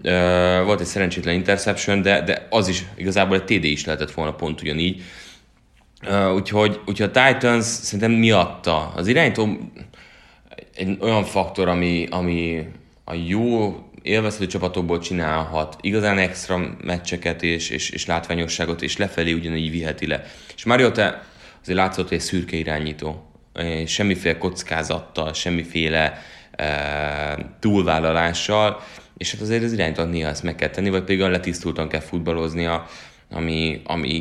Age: 20-39